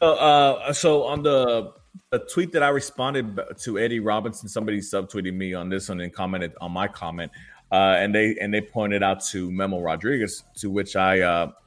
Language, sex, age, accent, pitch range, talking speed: English, male, 20-39, American, 95-110 Hz, 195 wpm